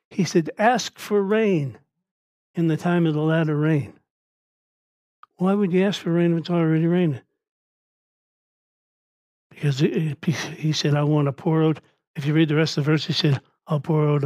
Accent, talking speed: American, 190 wpm